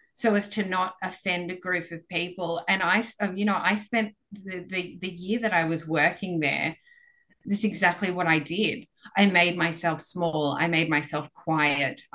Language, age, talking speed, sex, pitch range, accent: English, 30-49, 190 wpm, female, 170-205 Hz, Australian